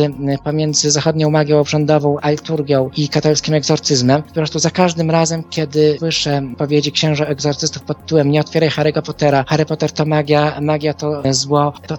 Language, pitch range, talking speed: Polish, 140-155 Hz, 160 wpm